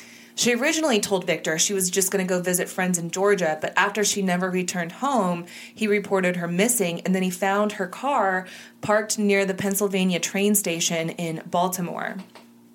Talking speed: 180 wpm